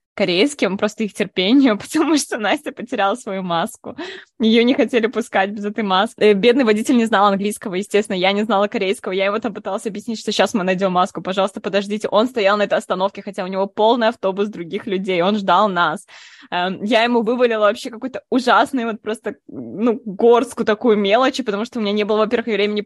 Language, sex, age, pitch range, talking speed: Russian, female, 20-39, 190-230 Hz, 195 wpm